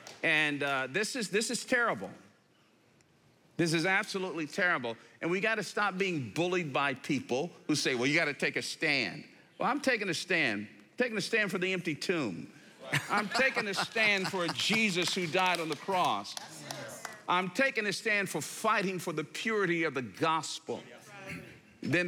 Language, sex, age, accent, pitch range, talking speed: English, male, 50-69, American, 115-185 Hz, 180 wpm